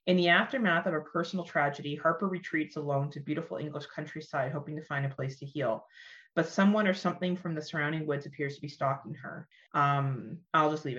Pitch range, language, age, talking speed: 145-190 Hz, English, 30-49, 210 wpm